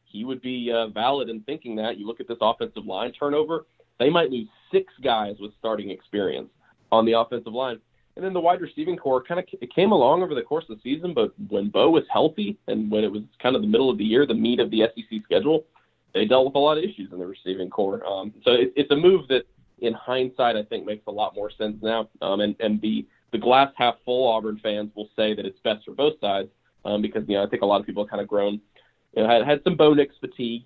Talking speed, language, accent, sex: 255 wpm, English, American, male